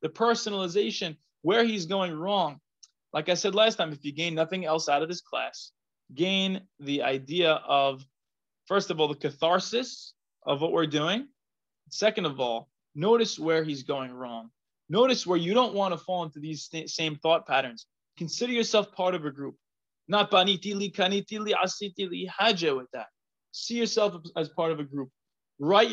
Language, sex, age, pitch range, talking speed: English, male, 20-39, 155-210 Hz, 175 wpm